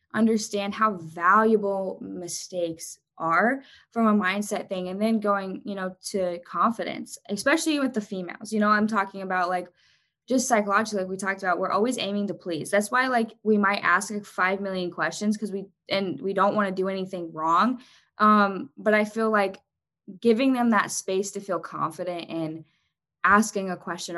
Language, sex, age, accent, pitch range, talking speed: English, female, 10-29, American, 180-220 Hz, 180 wpm